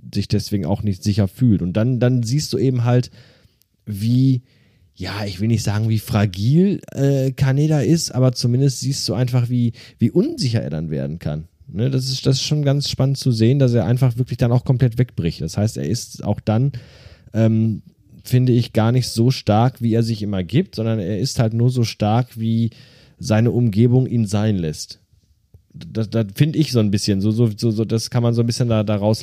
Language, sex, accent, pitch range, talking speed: German, male, German, 105-130 Hz, 205 wpm